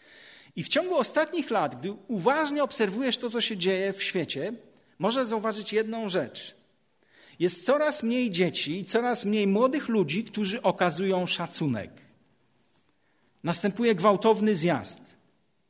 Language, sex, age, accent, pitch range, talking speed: Polish, male, 40-59, native, 175-235 Hz, 125 wpm